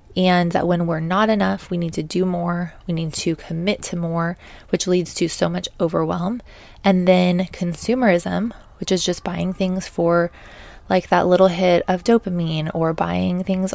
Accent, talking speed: American, 180 wpm